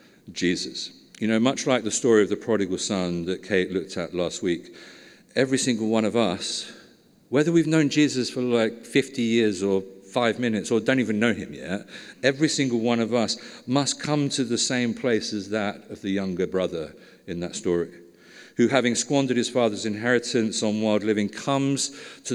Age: 50-69